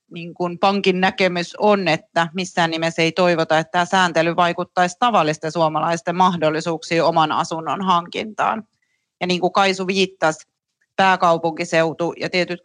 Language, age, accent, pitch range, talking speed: Finnish, 30-49, native, 165-190 Hz, 135 wpm